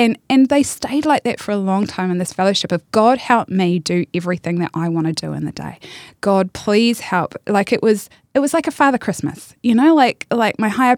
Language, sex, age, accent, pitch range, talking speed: English, female, 20-39, Australian, 175-220 Hz, 245 wpm